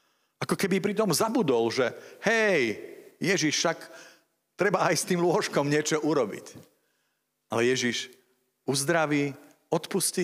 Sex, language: male, Slovak